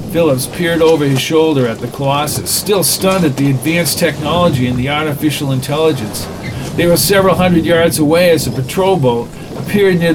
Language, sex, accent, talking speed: English, male, American, 175 wpm